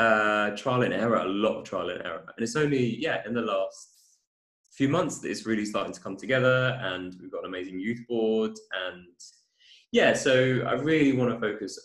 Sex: male